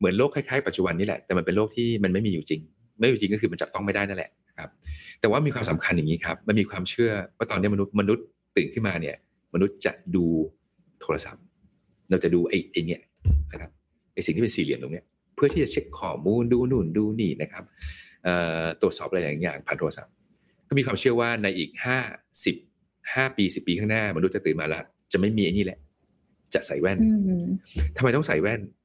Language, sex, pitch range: English, male, 90-125 Hz